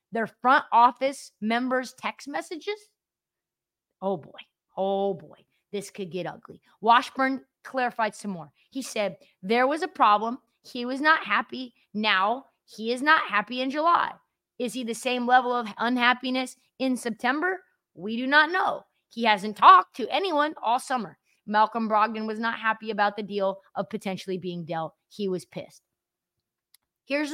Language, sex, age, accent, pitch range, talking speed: English, female, 20-39, American, 190-245 Hz, 155 wpm